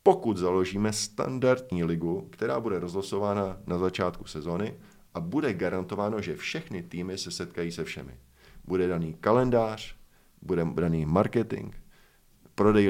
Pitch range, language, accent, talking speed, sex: 85-100 Hz, Czech, native, 125 wpm, male